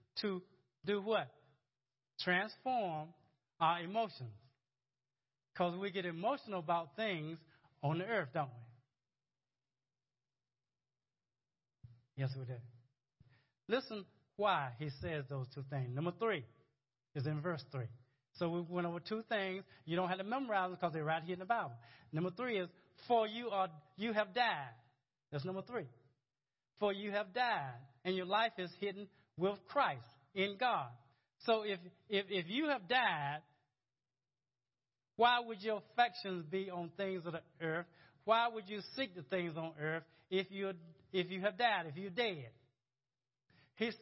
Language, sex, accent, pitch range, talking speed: English, male, American, 135-200 Hz, 155 wpm